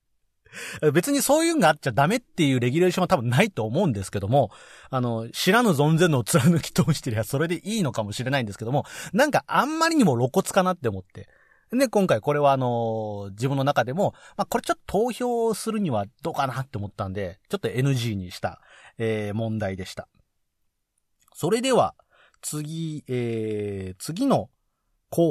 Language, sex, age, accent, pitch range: Japanese, male, 40-59, native, 115-185 Hz